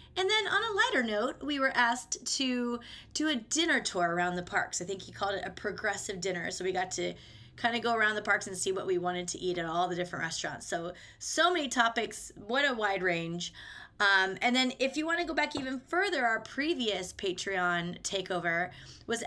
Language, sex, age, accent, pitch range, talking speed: English, female, 20-39, American, 195-245 Hz, 220 wpm